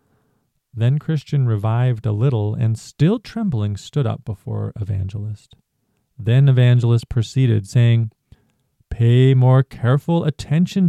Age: 40-59